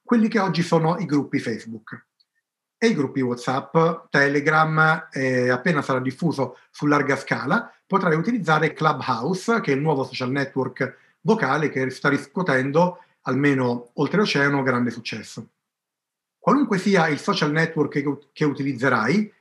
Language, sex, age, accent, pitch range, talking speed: Italian, male, 40-59, native, 135-165 Hz, 135 wpm